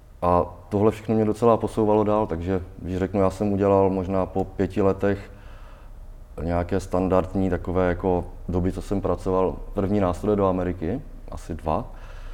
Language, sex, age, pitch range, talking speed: Czech, male, 20-39, 90-100 Hz, 150 wpm